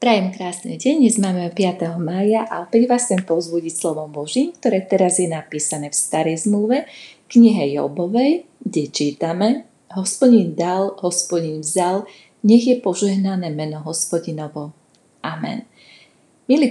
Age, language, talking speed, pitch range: 30-49, Slovak, 130 wpm, 170-205 Hz